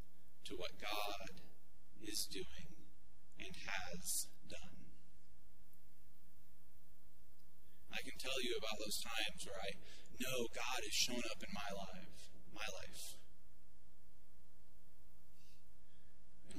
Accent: American